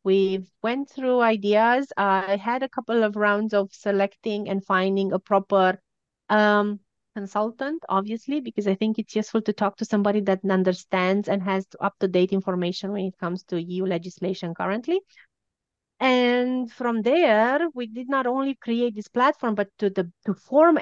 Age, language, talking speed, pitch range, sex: 30-49, German, 160 wpm, 190-235 Hz, female